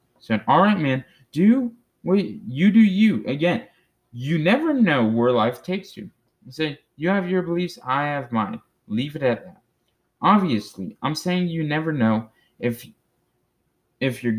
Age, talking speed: 20-39, 165 wpm